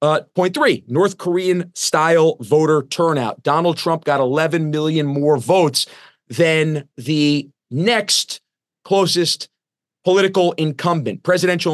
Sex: male